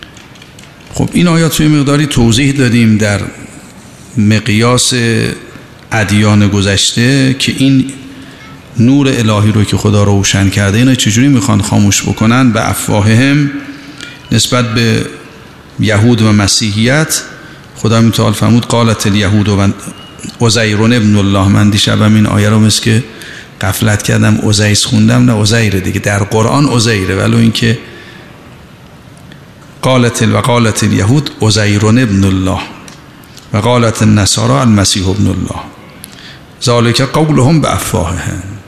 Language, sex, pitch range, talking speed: Persian, male, 105-125 Hz, 120 wpm